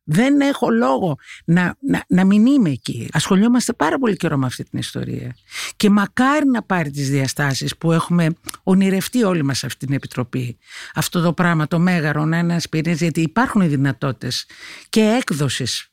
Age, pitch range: 50-69, 150-225 Hz